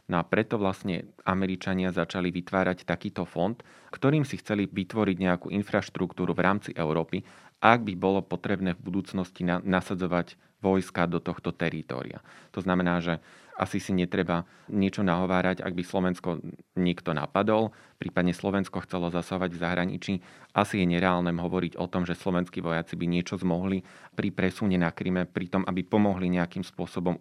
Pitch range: 90-100 Hz